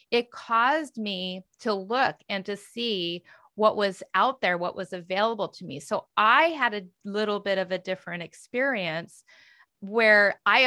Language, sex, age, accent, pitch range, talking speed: English, female, 30-49, American, 180-220 Hz, 165 wpm